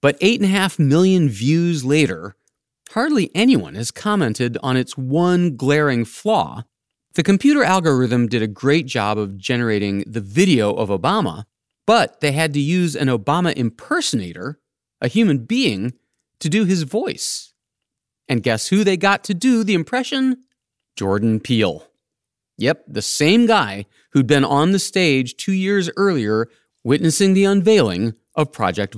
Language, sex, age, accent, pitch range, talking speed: English, male, 30-49, American, 115-175 Hz, 150 wpm